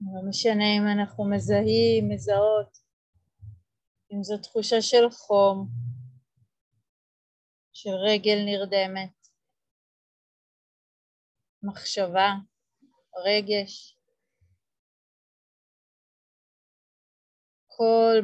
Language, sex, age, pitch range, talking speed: Hebrew, female, 30-49, 170-210 Hz, 55 wpm